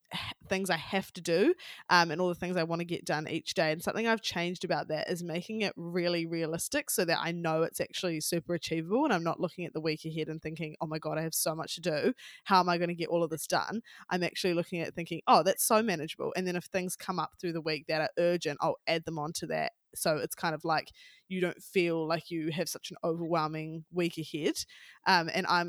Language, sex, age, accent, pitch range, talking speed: English, female, 20-39, Australian, 155-180 Hz, 255 wpm